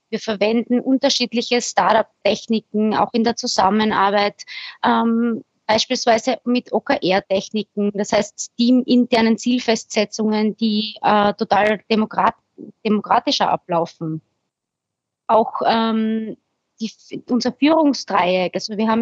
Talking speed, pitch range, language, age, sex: 95 wpm, 215-250 Hz, German, 20-39, female